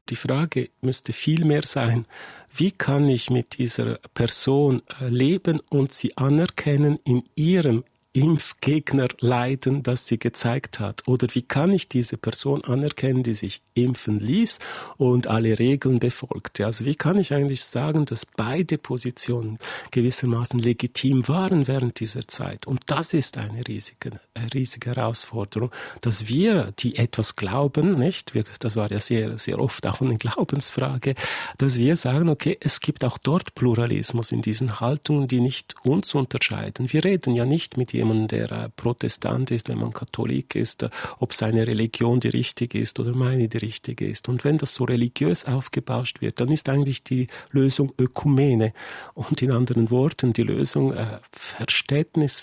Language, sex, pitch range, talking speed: German, male, 120-140 Hz, 160 wpm